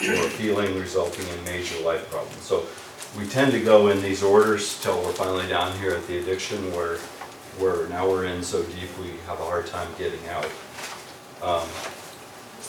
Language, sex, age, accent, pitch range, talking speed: English, male, 40-59, American, 90-100 Hz, 180 wpm